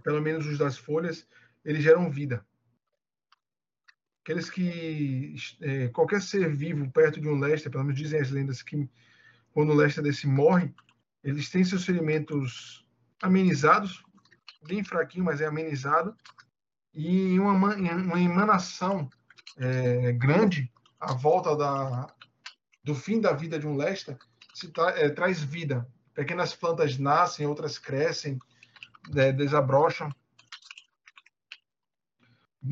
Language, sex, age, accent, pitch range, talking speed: Portuguese, male, 20-39, Brazilian, 140-180 Hz, 120 wpm